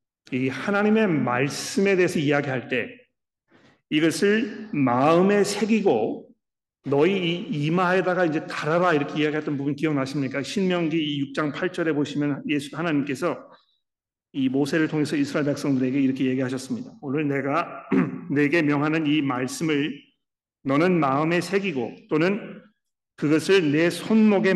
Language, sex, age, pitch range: Korean, male, 40-59, 145-195 Hz